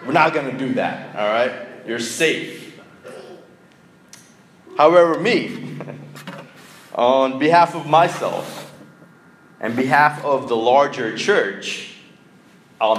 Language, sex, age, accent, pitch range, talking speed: English, male, 30-49, American, 135-190 Hz, 105 wpm